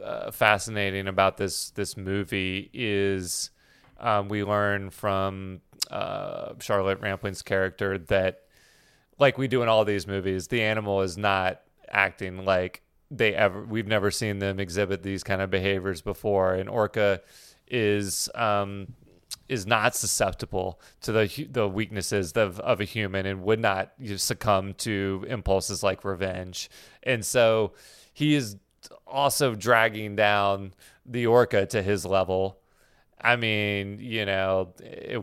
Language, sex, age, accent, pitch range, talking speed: English, male, 30-49, American, 95-105 Hz, 140 wpm